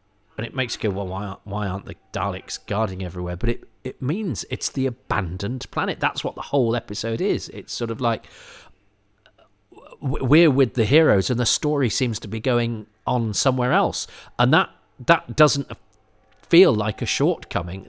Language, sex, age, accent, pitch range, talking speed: English, male, 40-59, British, 100-125 Hz, 180 wpm